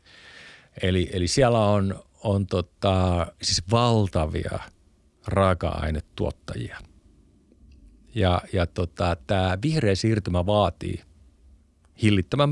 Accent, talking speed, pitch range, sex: native, 80 wpm, 90-110 Hz, male